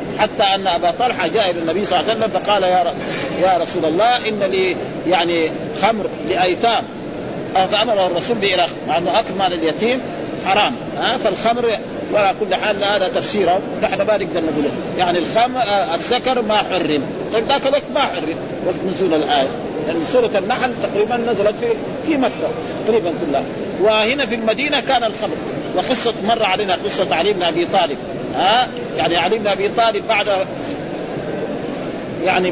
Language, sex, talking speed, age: Arabic, male, 150 wpm, 50-69